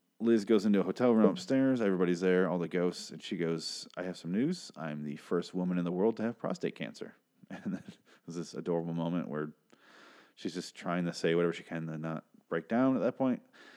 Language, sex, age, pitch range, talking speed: English, male, 30-49, 85-100 Hz, 220 wpm